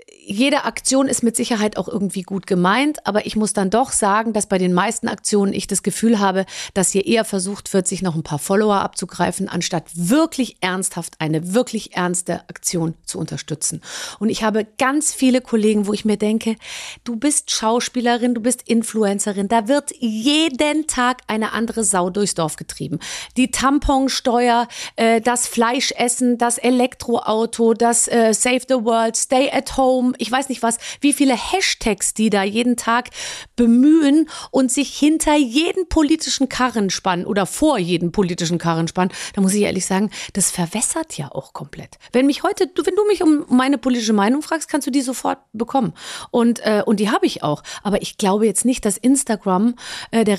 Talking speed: 180 wpm